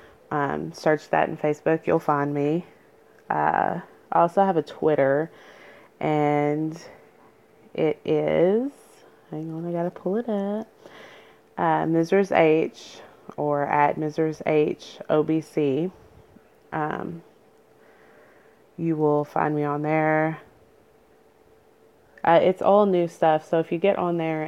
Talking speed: 130 wpm